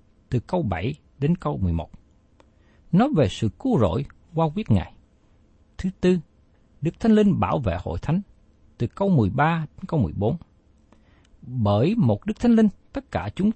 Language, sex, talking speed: Vietnamese, male, 165 wpm